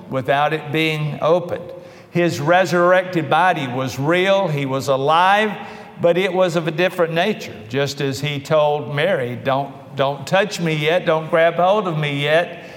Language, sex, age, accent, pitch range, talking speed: English, male, 50-69, American, 135-180 Hz, 165 wpm